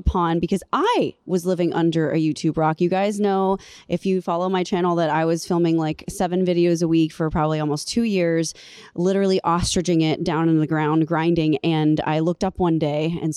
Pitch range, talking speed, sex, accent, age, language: 160-190 Hz, 205 wpm, female, American, 20-39, English